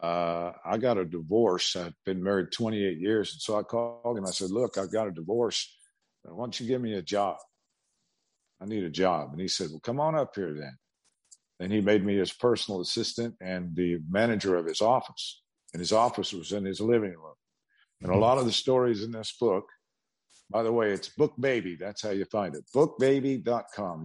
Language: English